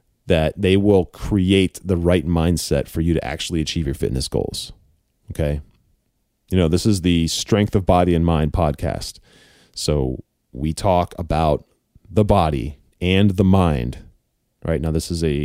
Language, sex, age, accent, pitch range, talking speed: English, male, 30-49, American, 80-105 Hz, 160 wpm